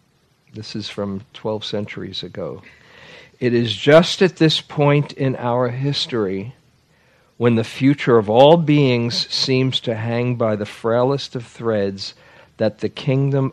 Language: English